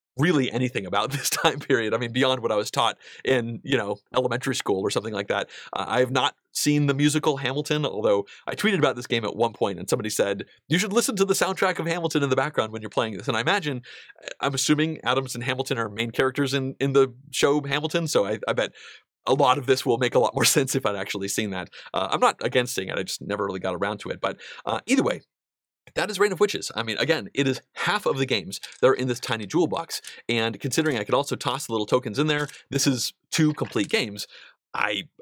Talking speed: 250 wpm